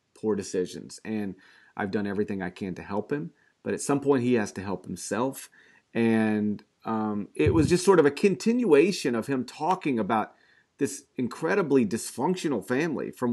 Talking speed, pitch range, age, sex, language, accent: 170 wpm, 115-160 Hz, 40-59, male, English, American